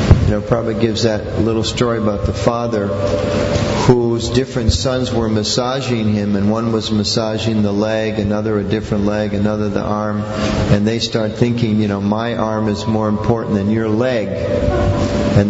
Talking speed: 170 wpm